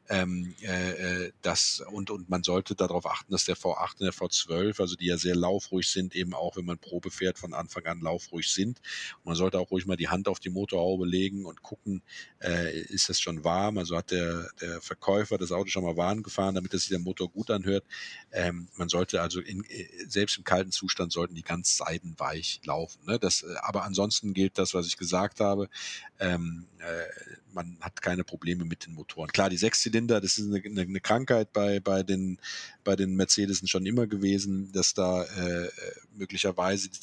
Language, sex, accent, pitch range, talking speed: German, male, German, 90-100 Hz, 200 wpm